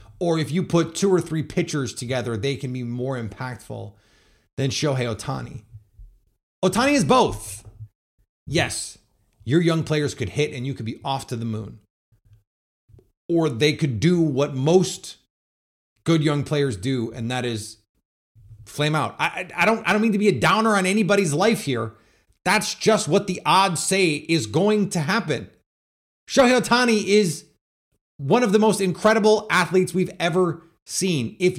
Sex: male